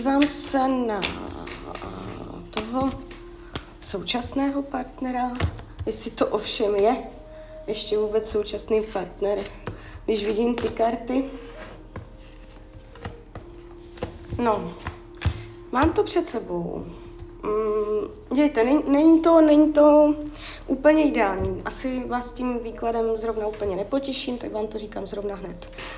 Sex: female